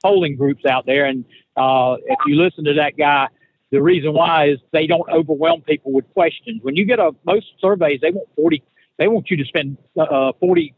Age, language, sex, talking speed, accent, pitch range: 60-79, English, male, 210 wpm, American, 140-185 Hz